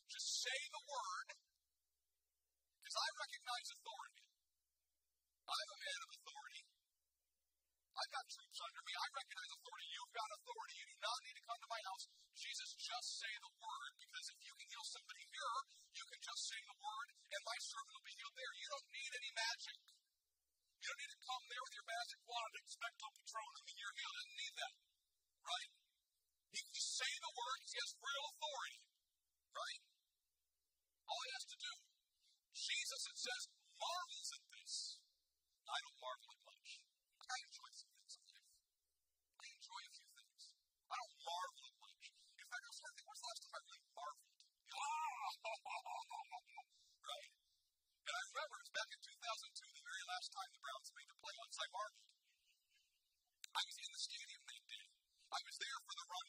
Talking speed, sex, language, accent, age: 180 wpm, male, English, American, 50-69